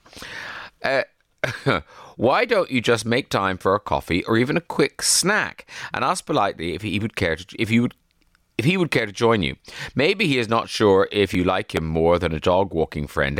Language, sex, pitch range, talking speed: English, male, 85-120 Hz, 215 wpm